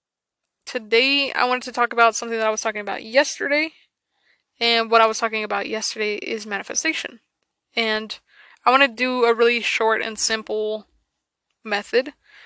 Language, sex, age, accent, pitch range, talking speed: English, female, 20-39, American, 215-240 Hz, 160 wpm